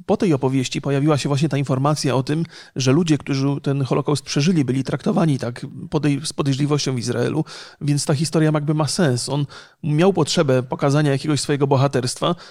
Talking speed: 180 wpm